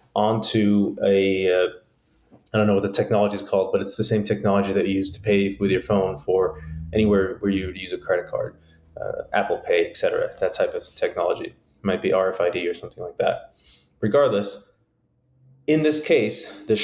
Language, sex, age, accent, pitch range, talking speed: English, male, 20-39, American, 100-130 Hz, 195 wpm